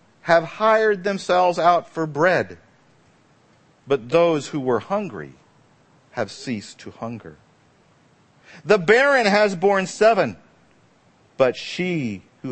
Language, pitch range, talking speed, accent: English, 175-235 Hz, 110 wpm, American